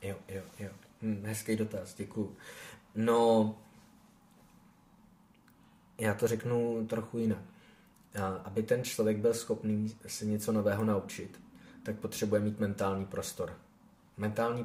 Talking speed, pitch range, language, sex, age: 115 wpm, 100-110 Hz, Czech, male, 20-39